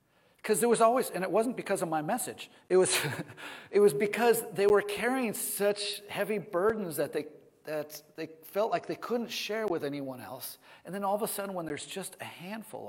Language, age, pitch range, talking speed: English, 40-59, 150-200 Hz, 210 wpm